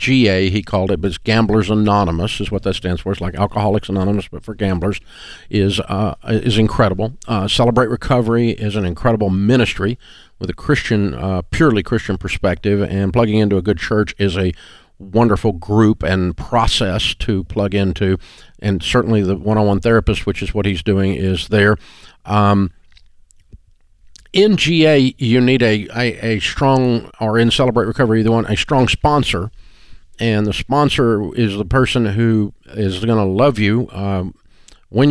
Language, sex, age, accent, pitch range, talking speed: English, male, 50-69, American, 95-115 Hz, 165 wpm